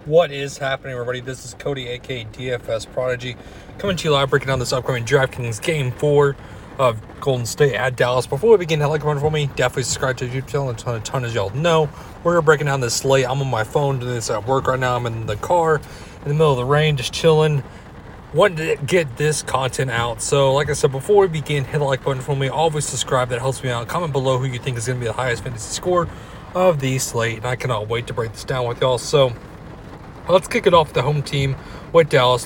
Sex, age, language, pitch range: male, 30-49, English, 125-150 Hz